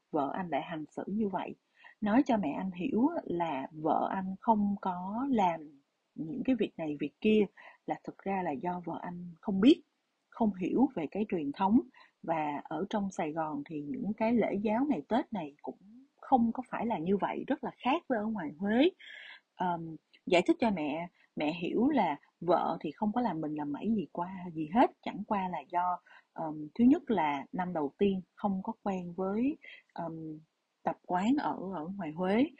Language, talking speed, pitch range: Vietnamese, 200 wpm, 165-235 Hz